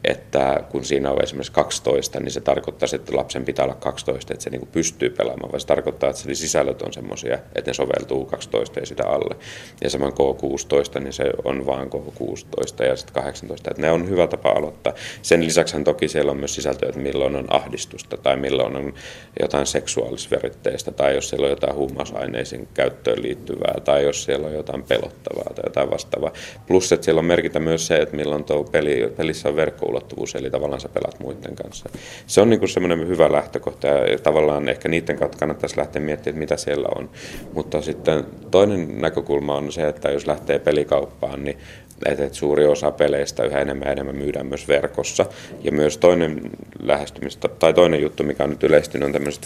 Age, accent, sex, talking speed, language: 30-49, native, male, 190 wpm, Finnish